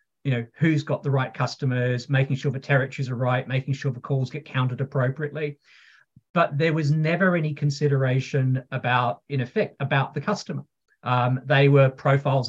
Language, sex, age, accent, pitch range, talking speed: English, male, 40-59, Australian, 130-150 Hz, 175 wpm